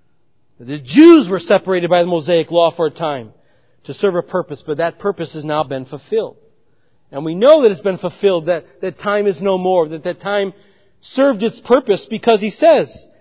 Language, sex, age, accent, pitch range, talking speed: English, male, 40-59, American, 175-245 Hz, 200 wpm